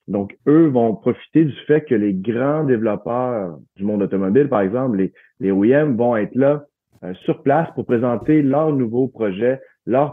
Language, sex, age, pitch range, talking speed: French, male, 30-49, 100-130 Hz, 180 wpm